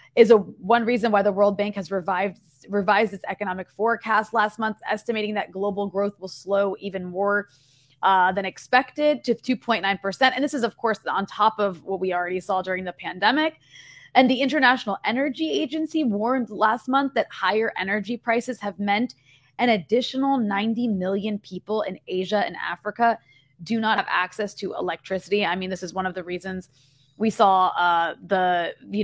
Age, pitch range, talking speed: 20-39, 190-235 Hz, 180 wpm